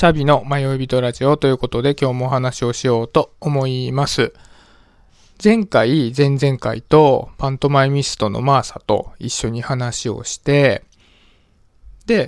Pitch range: 125-155 Hz